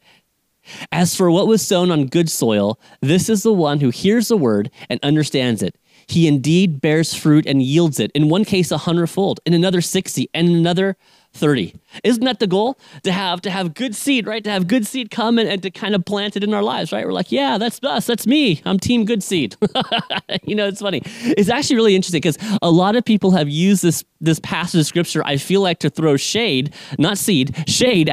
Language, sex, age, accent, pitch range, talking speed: English, male, 30-49, American, 160-220 Hz, 225 wpm